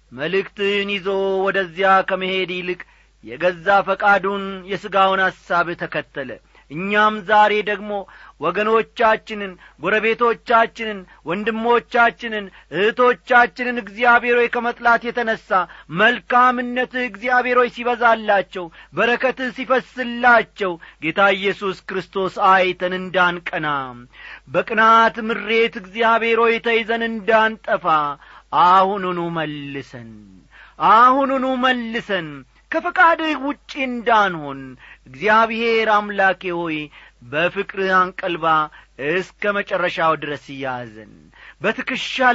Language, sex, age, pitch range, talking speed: Amharic, male, 40-59, 175-235 Hz, 75 wpm